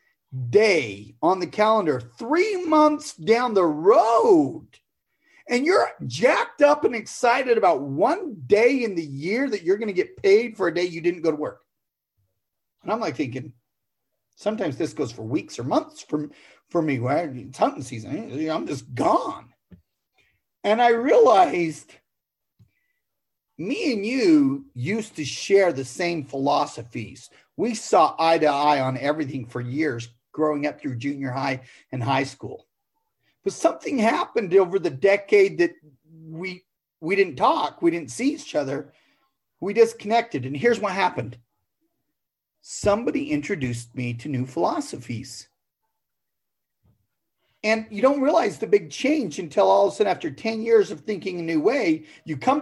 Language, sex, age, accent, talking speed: English, male, 40-59, American, 155 wpm